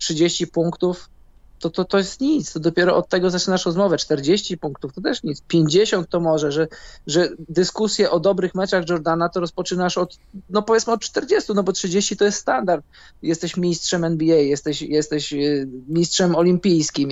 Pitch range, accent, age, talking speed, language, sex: 155-185 Hz, native, 20-39, 170 wpm, Polish, male